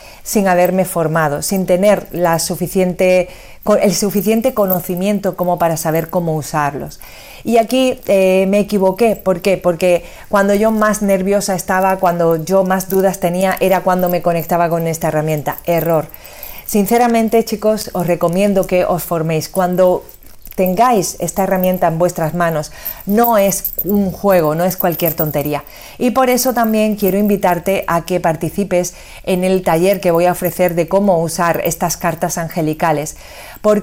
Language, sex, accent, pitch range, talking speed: Spanish, female, Spanish, 170-205 Hz, 155 wpm